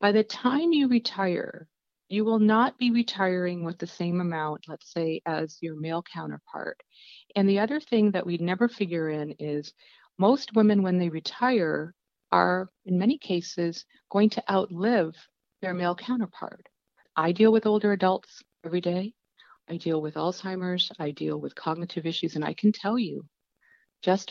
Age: 50-69